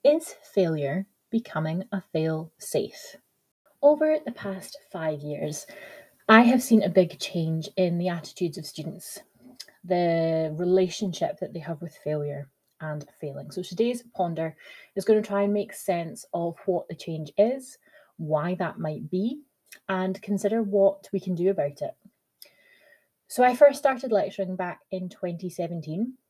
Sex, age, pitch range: female, 30-49, 170-205 Hz